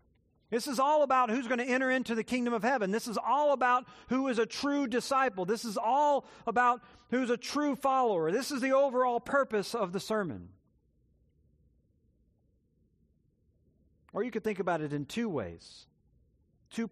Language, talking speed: English, 170 wpm